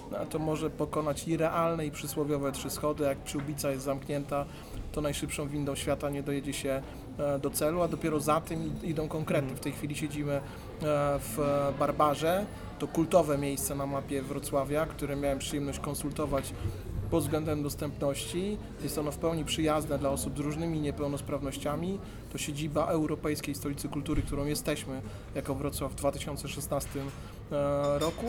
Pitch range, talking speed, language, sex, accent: 140-155 Hz, 145 wpm, Polish, male, native